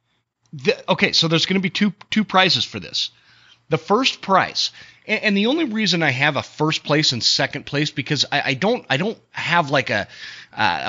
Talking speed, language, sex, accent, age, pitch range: 205 wpm, English, male, American, 30-49, 125-165 Hz